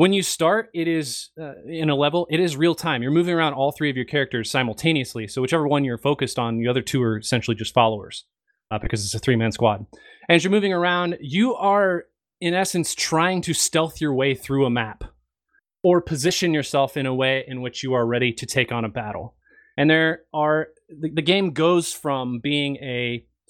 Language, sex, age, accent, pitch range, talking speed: English, male, 20-39, American, 125-160 Hz, 210 wpm